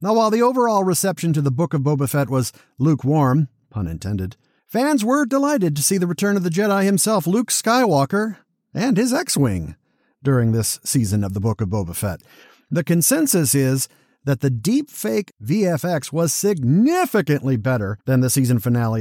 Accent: American